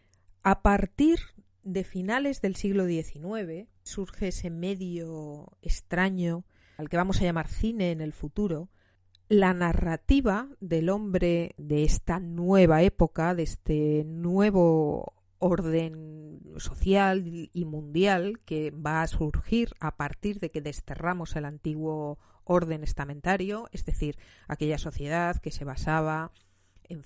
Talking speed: 125 wpm